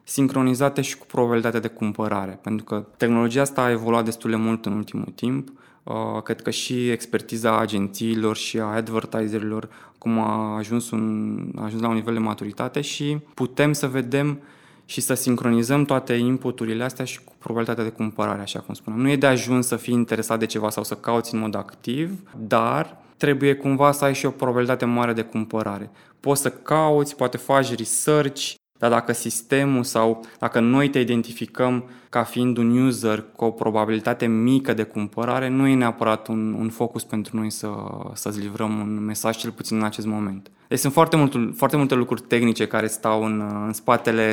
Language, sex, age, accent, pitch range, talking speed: Romanian, male, 20-39, native, 110-125 Hz, 180 wpm